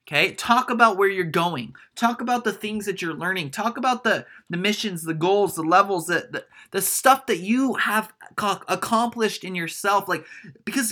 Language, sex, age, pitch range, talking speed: English, male, 20-39, 170-230 Hz, 185 wpm